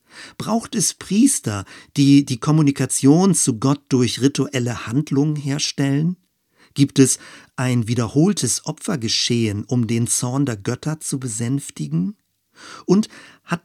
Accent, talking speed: German, 115 wpm